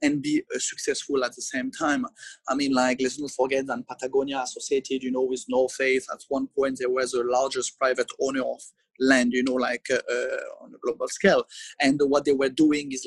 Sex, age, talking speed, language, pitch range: male, 30-49, 210 wpm, English, 130-185 Hz